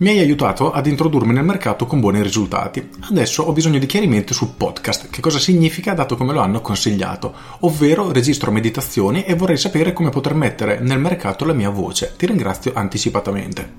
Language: Italian